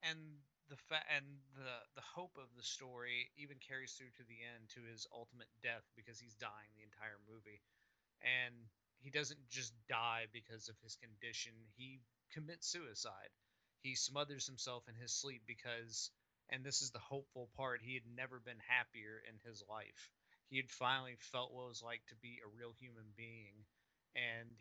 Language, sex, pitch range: English, male, 115-125 Hz